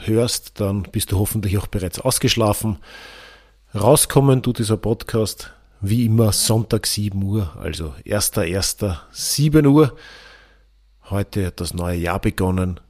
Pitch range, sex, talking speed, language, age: 100-130 Hz, male, 120 wpm, German, 40-59